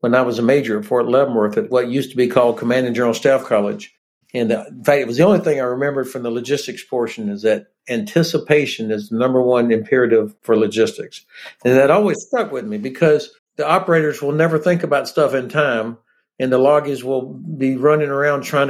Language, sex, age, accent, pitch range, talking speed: English, male, 60-79, American, 125-150 Hz, 215 wpm